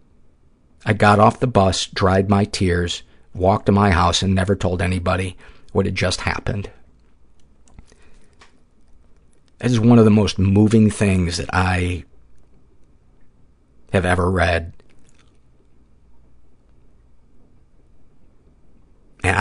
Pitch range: 75-95 Hz